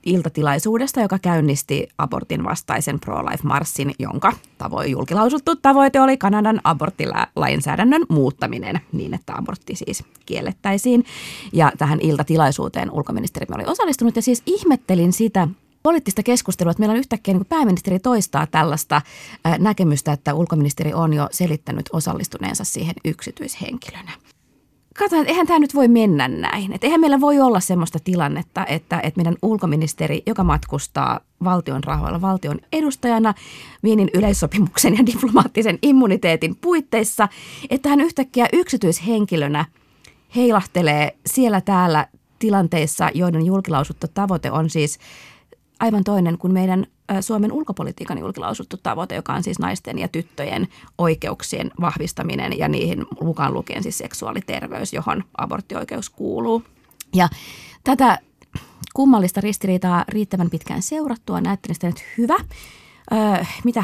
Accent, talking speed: native, 120 wpm